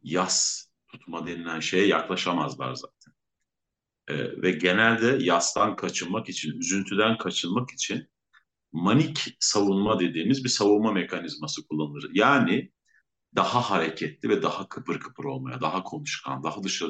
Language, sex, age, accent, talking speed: Turkish, male, 50-69, native, 120 wpm